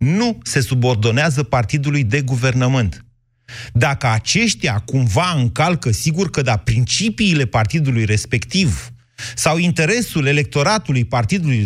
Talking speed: 105 wpm